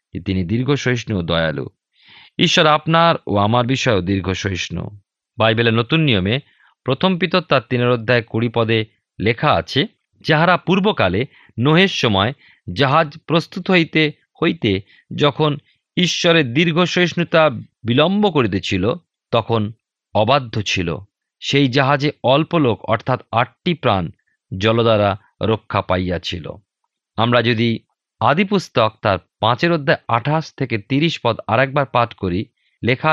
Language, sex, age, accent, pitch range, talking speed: Bengali, male, 40-59, native, 110-150 Hz, 110 wpm